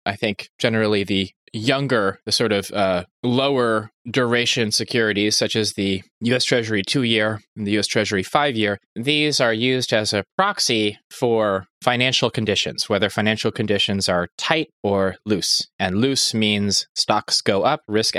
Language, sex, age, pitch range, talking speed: English, male, 20-39, 105-135 Hz, 150 wpm